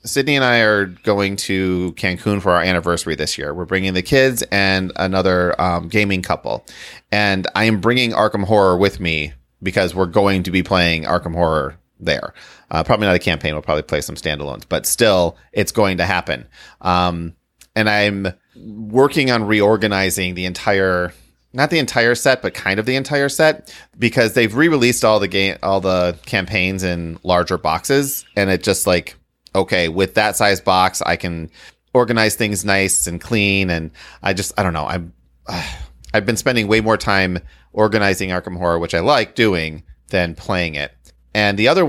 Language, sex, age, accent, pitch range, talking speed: English, male, 30-49, American, 85-110 Hz, 180 wpm